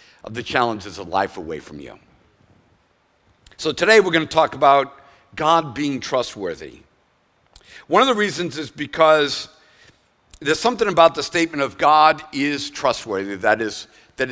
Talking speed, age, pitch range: 150 wpm, 50-69, 145-200 Hz